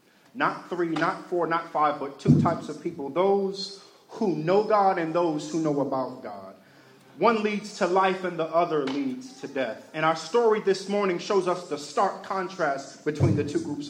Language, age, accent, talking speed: English, 40-59, American, 195 wpm